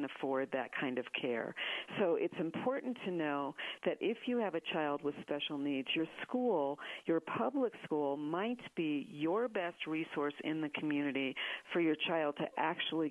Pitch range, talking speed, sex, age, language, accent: 145-175 Hz, 170 wpm, female, 50-69, English, American